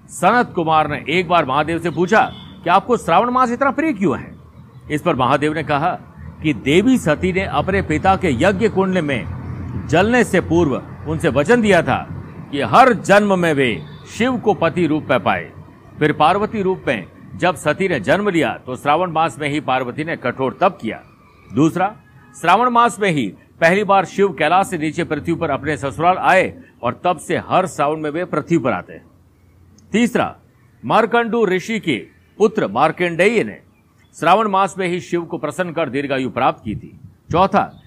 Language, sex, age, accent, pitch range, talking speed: Hindi, male, 50-69, native, 145-190 Hz, 180 wpm